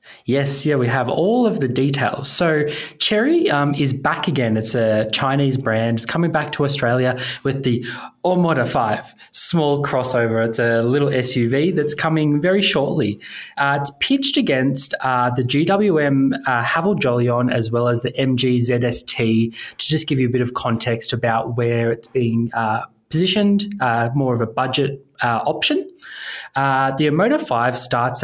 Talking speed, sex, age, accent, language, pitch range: 170 wpm, male, 20-39, Australian, English, 120-150 Hz